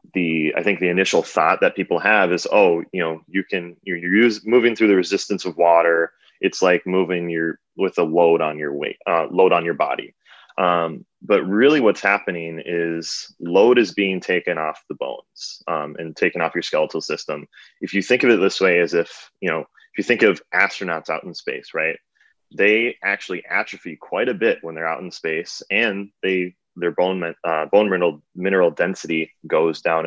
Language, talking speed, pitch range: English, 200 wpm, 80-95 Hz